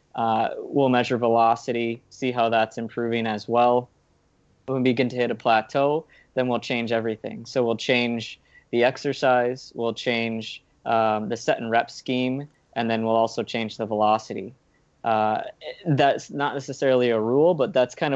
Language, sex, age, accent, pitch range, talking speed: English, male, 20-39, American, 115-125 Hz, 165 wpm